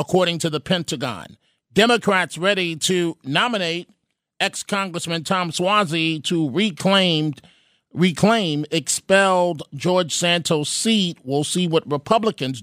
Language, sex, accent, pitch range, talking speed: English, male, American, 155-190 Hz, 105 wpm